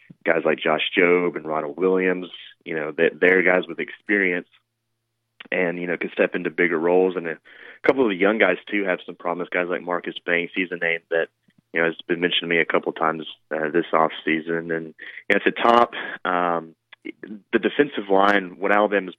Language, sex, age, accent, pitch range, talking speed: English, male, 30-49, American, 85-95 Hz, 215 wpm